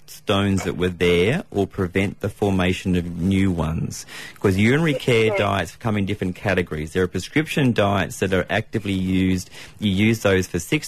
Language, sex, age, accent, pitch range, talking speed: English, male, 30-49, Australian, 90-110 Hz, 175 wpm